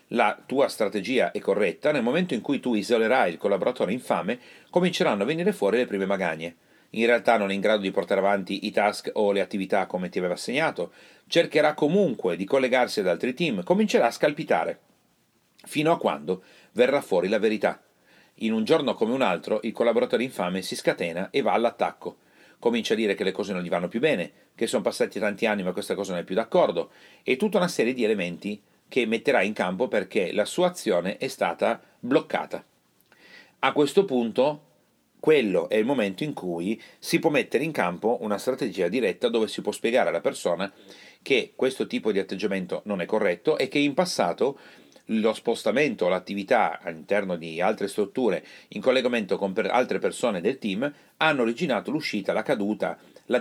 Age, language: 40-59, Italian